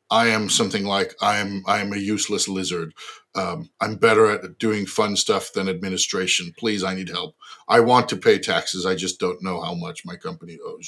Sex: male